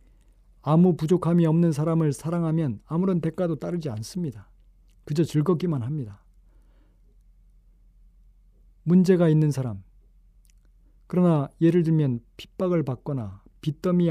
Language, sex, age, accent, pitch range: Korean, male, 40-59, native, 125-165 Hz